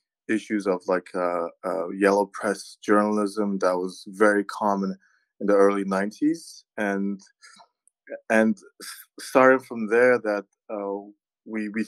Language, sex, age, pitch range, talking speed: English, male, 20-39, 100-130 Hz, 125 wpm